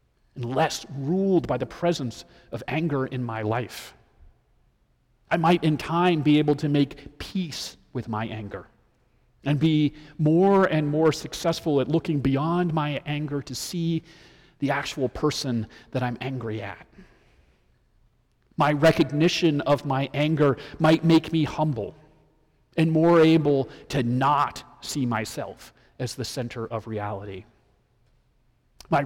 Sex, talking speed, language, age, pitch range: male, 135 wpm, English, 40-59, 125-155 Hz